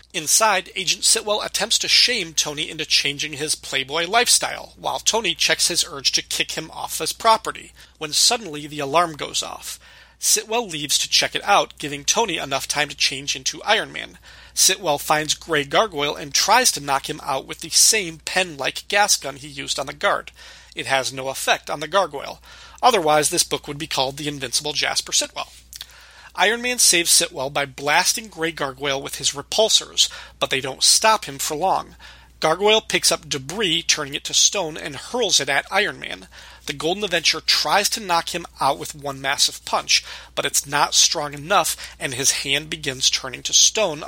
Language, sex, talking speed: English, male, 190 wpm